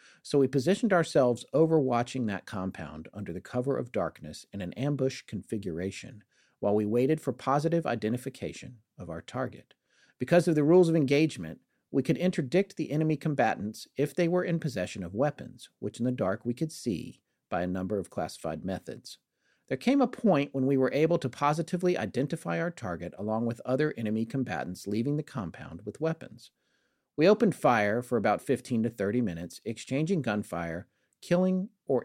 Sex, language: male, English